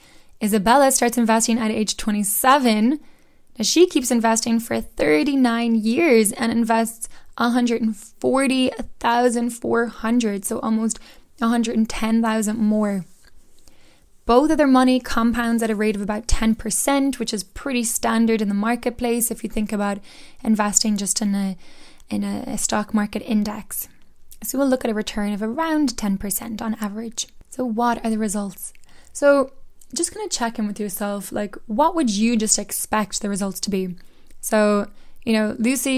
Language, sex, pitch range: English, female, 210-245 Hz